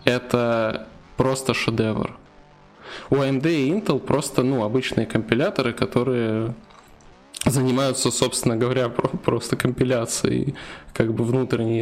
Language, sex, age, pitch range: Russian, male, 20-39, 120-135 Hz